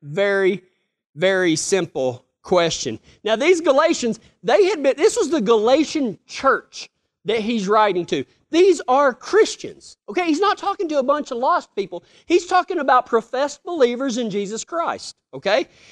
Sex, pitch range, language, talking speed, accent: male, 220-295 Hz, English, 155 wpm, American